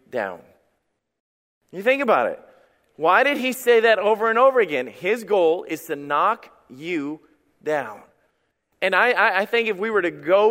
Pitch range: 195-255 Hz